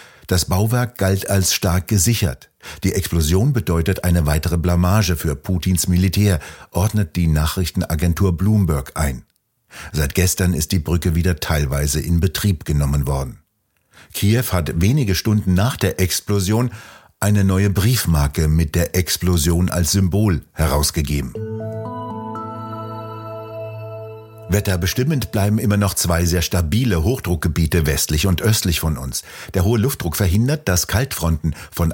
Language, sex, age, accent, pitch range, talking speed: German, male, 60-79, German, 80-100 Hz, 125 wpm